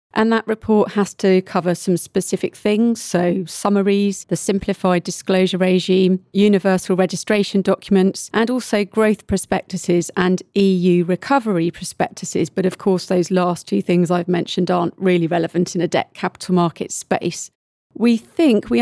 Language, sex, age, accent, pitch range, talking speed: English, female, 40-59, British, 180-205 Hz, 150 wpm